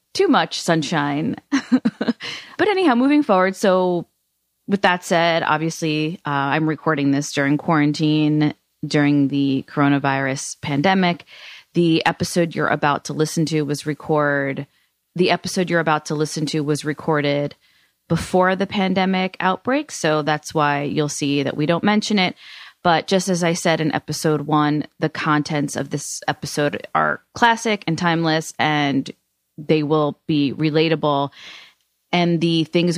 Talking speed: 145 wpm